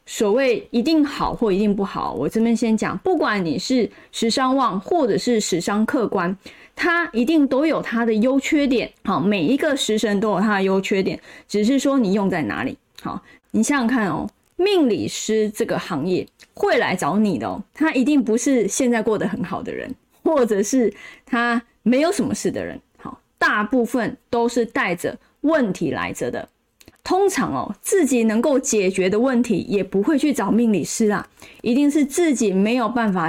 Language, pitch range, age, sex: Chinese, 210-270 Hz, 20-39, female